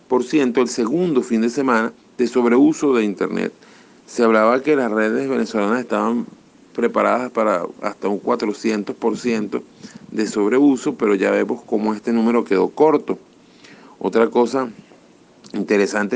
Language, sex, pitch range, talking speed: Spanish, male, 105-125 Hz, 125 wpm